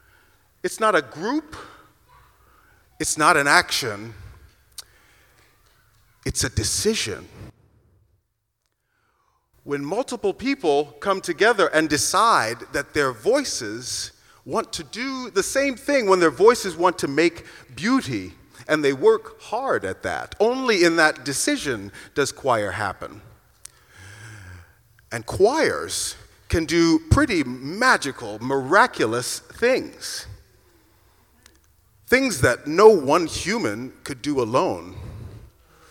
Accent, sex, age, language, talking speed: American, male, 40-59, English, 105 wpm